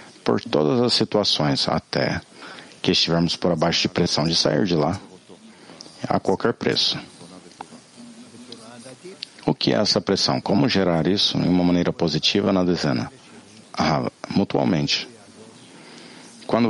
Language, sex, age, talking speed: English, male, 40-59, 125 wpm